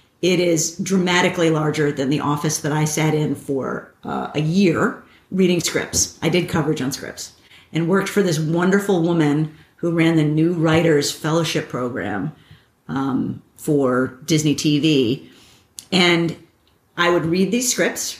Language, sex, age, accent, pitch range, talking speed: English, female, 50-69, American, 160-200 Hz, 150 wpm